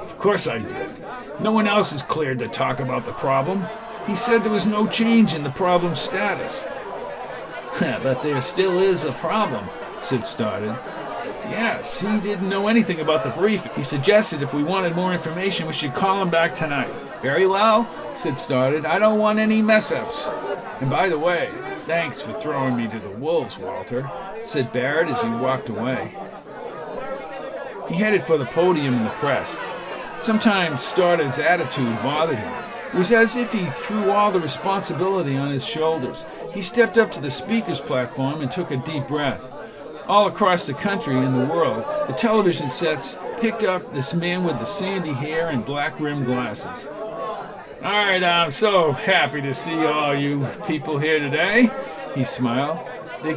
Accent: American